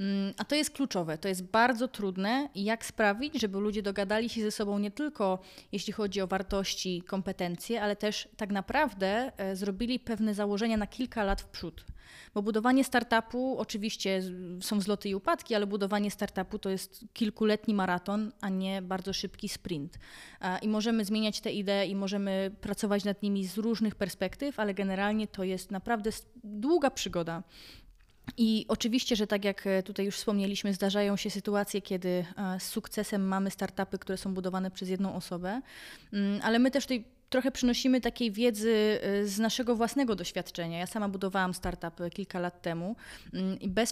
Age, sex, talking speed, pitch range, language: 20-39, female, 160 wpm, 190-225 Hz, Polish